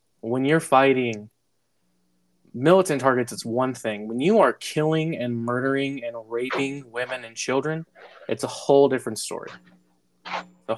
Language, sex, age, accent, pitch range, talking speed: English, male, 20-39, American, 115-145 Hz, 140 wpm